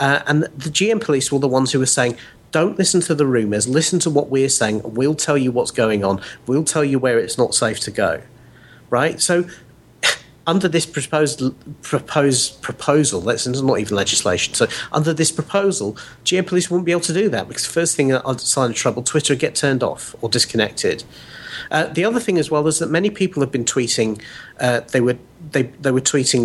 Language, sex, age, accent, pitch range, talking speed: English, male, 40-59, British, 125-155 Hz, 210 wpm